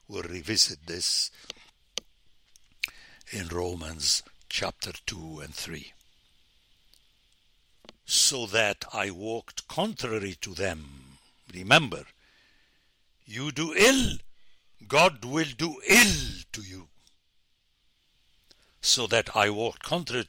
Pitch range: 85-125 Hz